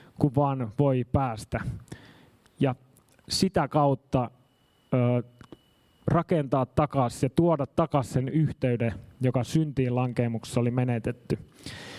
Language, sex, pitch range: Finnish, male, 130-170 Hz